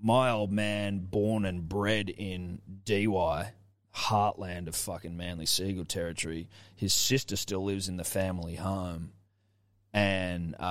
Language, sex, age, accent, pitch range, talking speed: English, male, 20-39, Australian, 90-105 Hz, 130 wpm